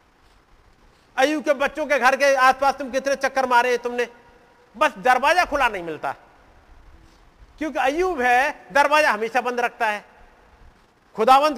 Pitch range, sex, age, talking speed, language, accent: 195-270 Hz, male, 50-69, 140 wpm, Hindi, native